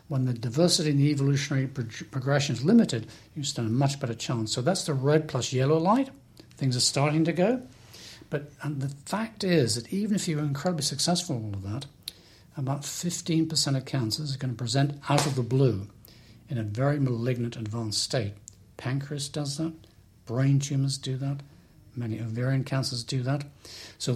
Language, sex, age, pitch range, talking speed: English, male, 60-79, 120-150 Hz, 185 wpm